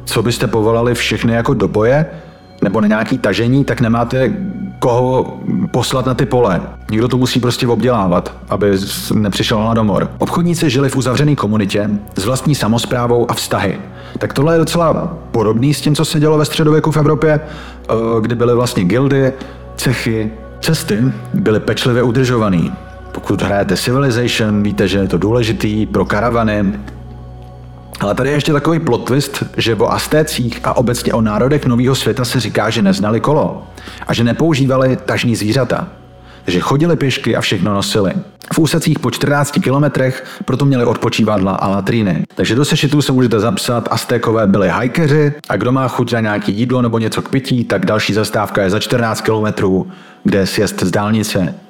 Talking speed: 165 wpm